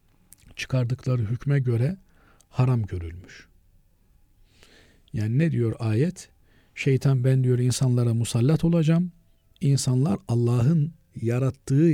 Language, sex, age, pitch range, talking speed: Turkish, male, 50-69, 100-135 Hz, 90 wpm